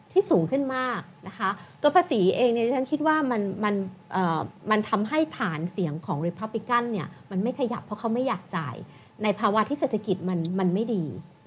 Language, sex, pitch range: Thai, female, 185-245 Hz